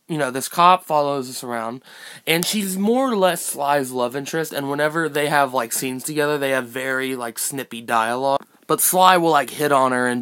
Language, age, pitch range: English, 20-39, 120-155 Hz